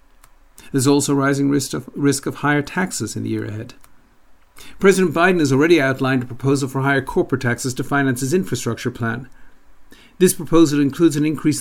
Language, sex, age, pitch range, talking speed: English, male, 50-69, 120-145 Hz, 175 wpm